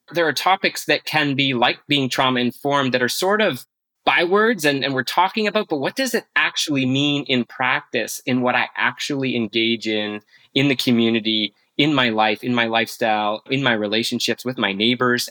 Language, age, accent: English, 20-39, American